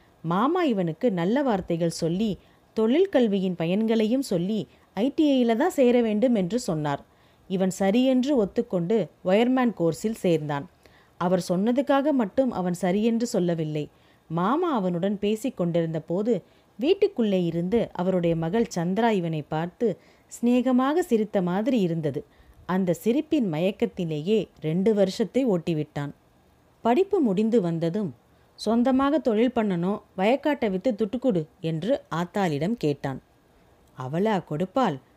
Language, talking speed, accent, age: Tamil, 100 wpm, native, 30-49